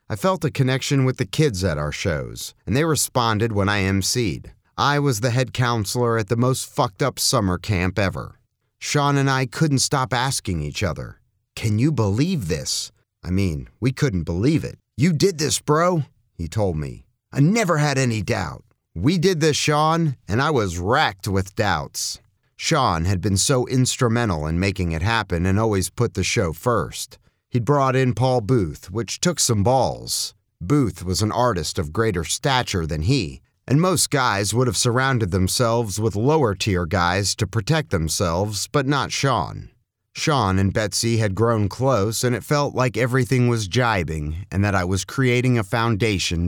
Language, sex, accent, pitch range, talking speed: English, male, American, 95-130 Hz, 180 wpm